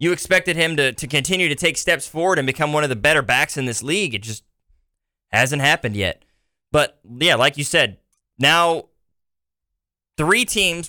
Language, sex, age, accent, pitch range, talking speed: English, male, 20-39, American, 120-165 Hz, 180 wpm